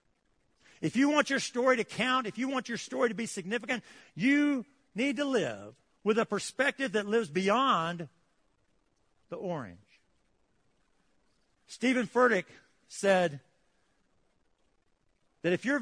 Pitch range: 150-210 Hz